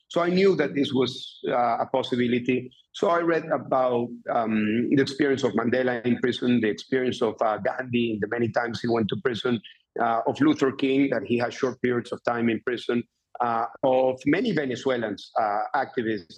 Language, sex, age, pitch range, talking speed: English, male, 50-69, 120-140 Hz, 185 wpm